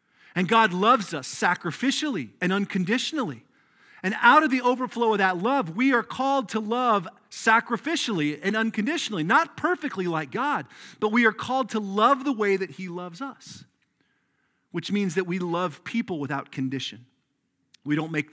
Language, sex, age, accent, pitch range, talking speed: English, male, 40-59, American, 150-220 Hz, 165 wpm